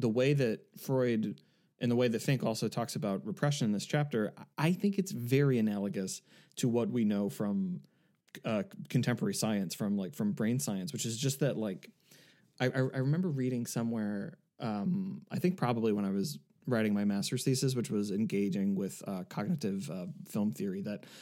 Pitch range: 115-190 Hz